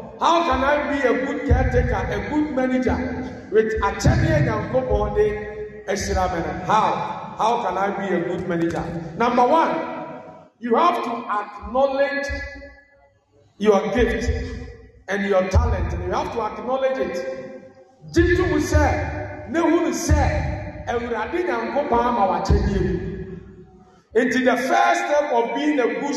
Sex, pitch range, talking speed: male, 190-280 Hz, 120 wpm